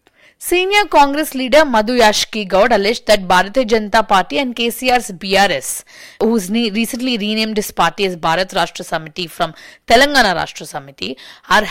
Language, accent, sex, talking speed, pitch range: English, Indian, female, 145 wpm, 195-255 Hz